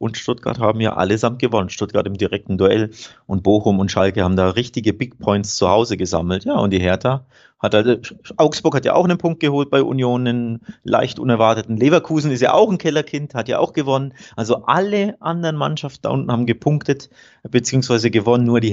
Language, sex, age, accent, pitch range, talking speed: German, male, 30-49, German, 110-135 Hz, 190 wpm